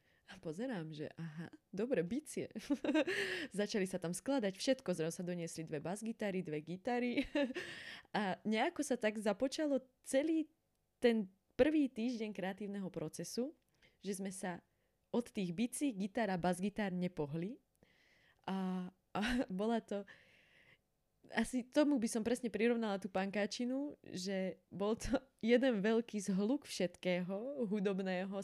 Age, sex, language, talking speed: 20-39, female, Slovak, 125 wpm